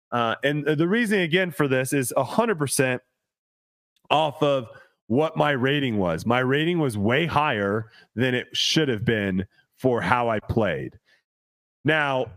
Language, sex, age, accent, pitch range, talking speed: English, male, 30-49, American, 115-145 Hz, 155 wpm